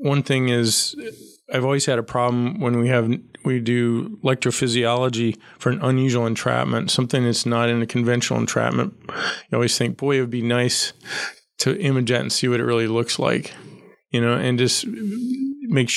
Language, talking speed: English, 180 wpm